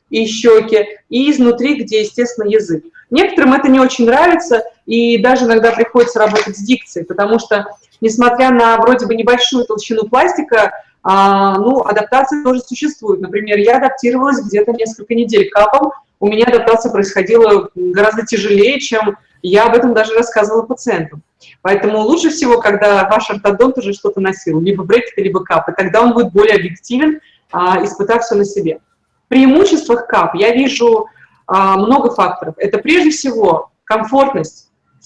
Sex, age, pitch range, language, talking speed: female, 30-49, 200-250 Hz, Russian, 145 wpm